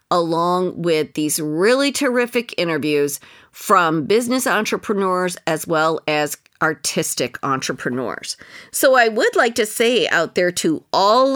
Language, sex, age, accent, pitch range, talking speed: English, female, 50-69, American, 155-210 Hz, 125 wpm